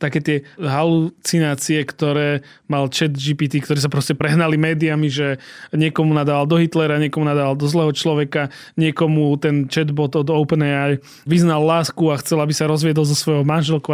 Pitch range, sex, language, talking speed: 145-170 Hz, male, Slovak, 160 wpm